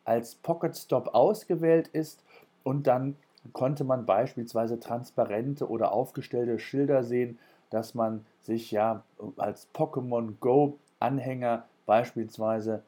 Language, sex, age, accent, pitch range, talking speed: German, male, 40-59, German, 110-140 Hz, 100 wpm